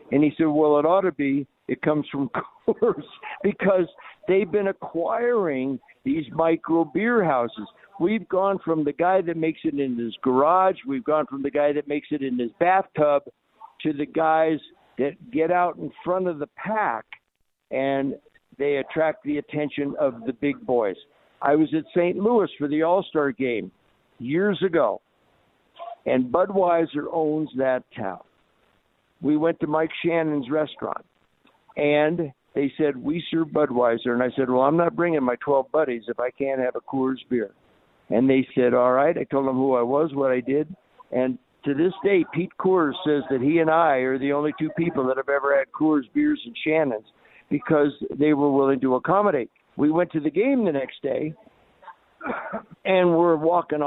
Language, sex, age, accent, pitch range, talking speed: English, male, 60-79, American, 135-170 Hz, 180 wpm